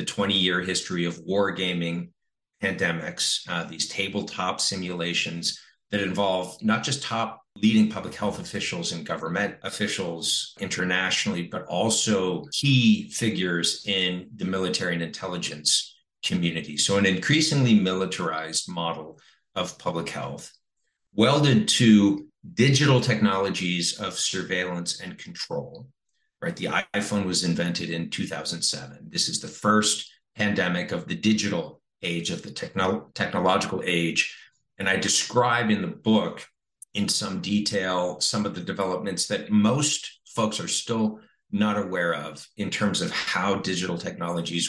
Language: English